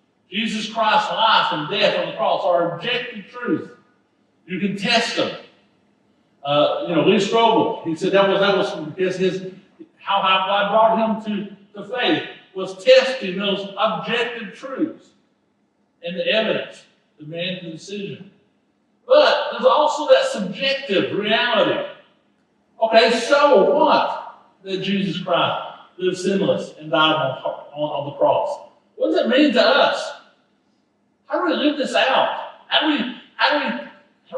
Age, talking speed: 60-79, 145 wpm